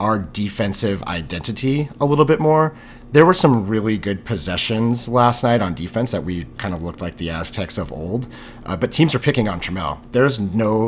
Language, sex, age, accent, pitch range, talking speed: English, male, 40-59, American, 100-120 Hz, 200 wpm